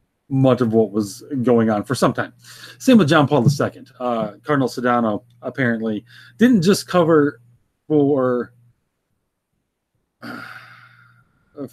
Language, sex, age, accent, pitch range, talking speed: English, male, 30-49, American, 120-140 Hz, 120 wpm